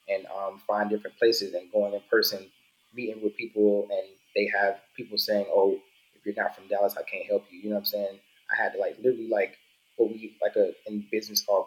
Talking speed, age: 230 wpm, 20-39